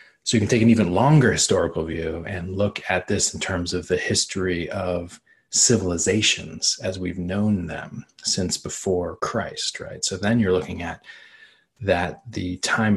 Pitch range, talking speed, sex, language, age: 90-100 Hz, 165 wpm, male, English, 30-49